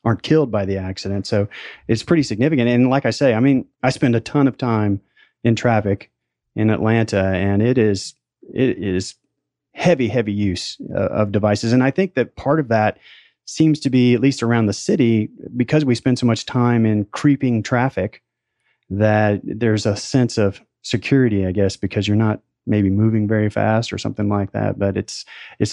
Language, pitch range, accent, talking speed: English, 105-125 Hz, American, 190 wpm